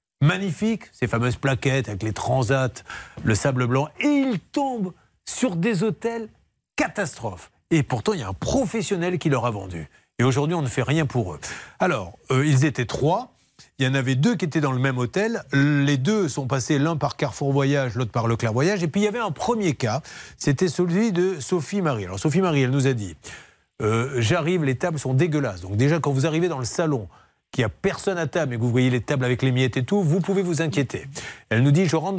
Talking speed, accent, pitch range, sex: 230 wpm, French, 135-195 Hz, male